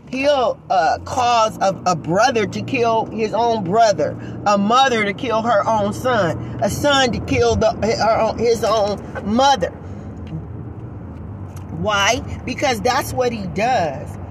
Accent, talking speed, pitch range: American, 130 wpm, 190-265 Hz